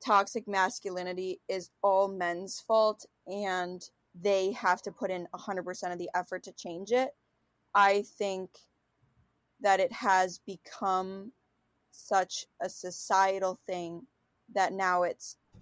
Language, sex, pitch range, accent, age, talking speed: English, female, 175-200 Hz, American, 20-39, 130 wpm